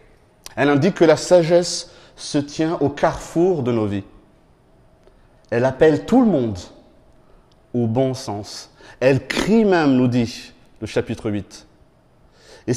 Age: 30-49